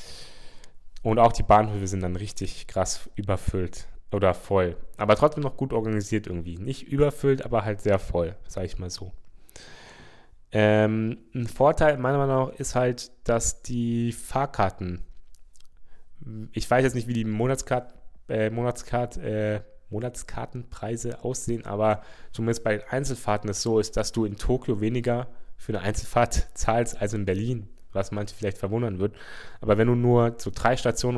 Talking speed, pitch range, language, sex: 160 wpm, 95-115 Hz, German, male